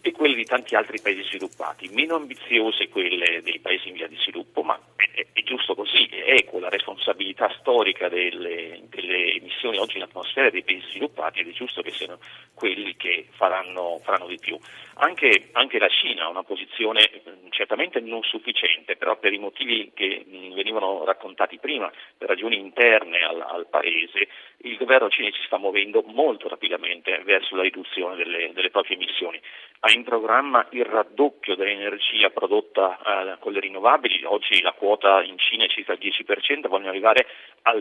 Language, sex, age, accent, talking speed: Italian, male, 40-59, native, 170 wpm